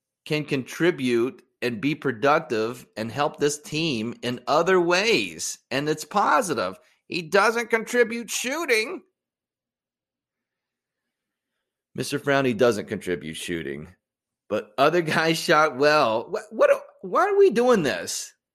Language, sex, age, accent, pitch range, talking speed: English, male, 30-49, American, 115-185 Hz, 115 wpm